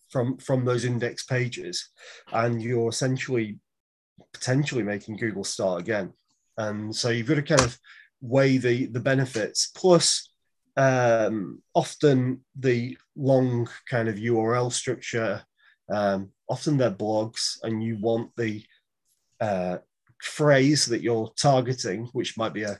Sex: male